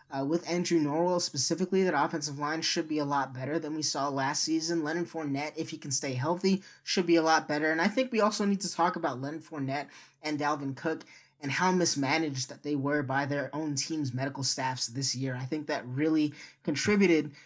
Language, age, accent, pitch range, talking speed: English, 20-39, American, 135-160 Hz, 215 wpm